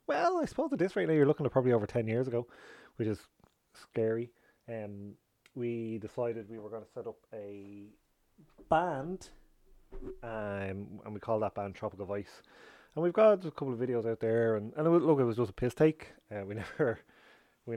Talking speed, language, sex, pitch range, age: 205 wpm, English, male, 105-125 Hz, 20-39